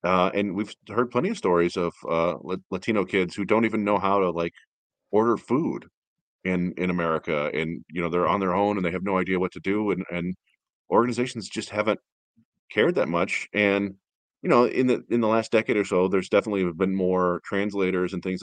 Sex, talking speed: male, 210 wpm